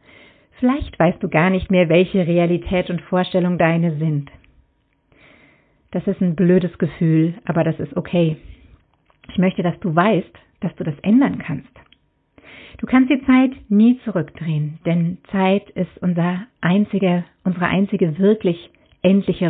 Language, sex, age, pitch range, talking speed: German, female, 50-69, 165-200 Hz, 140 wpm